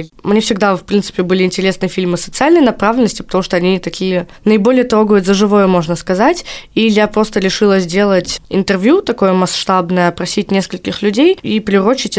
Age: 20-39